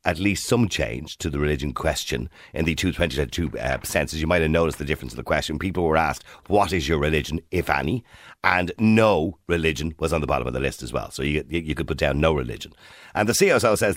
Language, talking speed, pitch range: English, 235 wpm, 75-105 Hz